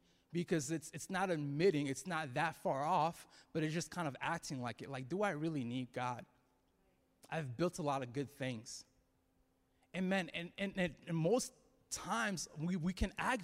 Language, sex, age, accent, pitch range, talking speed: English, male, 20-39, American, 150-210 Hz, 190 wpm